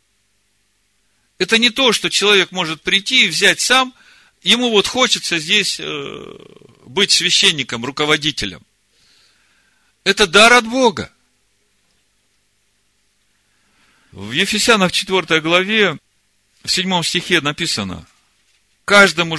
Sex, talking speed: male, 95 wpm